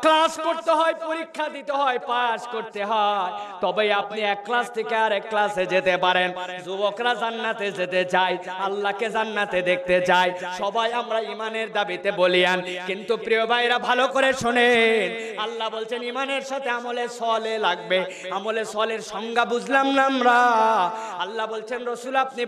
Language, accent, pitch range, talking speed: Bengali, native, 205-260 Hz, 55 wpm